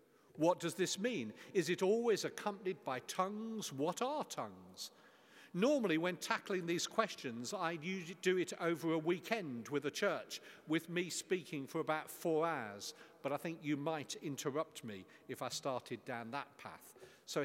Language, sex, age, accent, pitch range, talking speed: English, male, 50-69, British, 160-210 Hz, 170 wpm